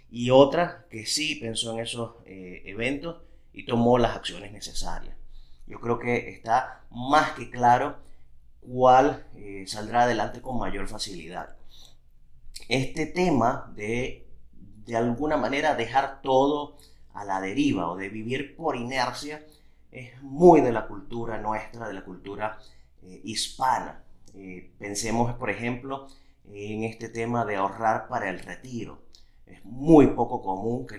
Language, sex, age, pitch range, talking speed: Spanish, male, 30-49, 105-135 Hz, 140 wpm